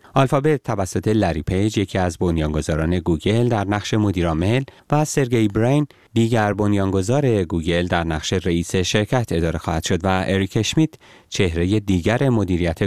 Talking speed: 140 wpm